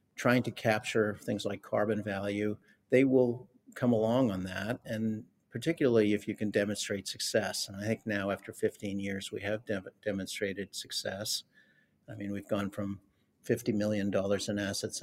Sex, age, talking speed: male, 50-69, 160 wpm